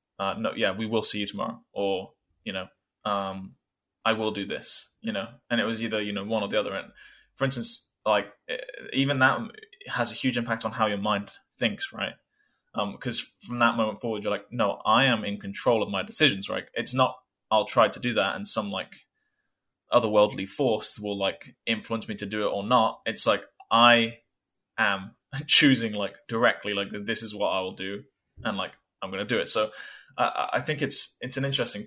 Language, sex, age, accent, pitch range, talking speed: English, male, 20-39, British, 105-120 Hz, 205 wpm